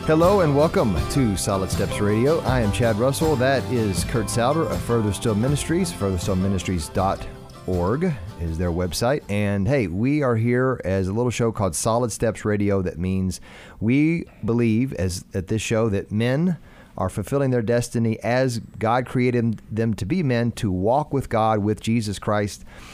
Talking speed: 175 wpm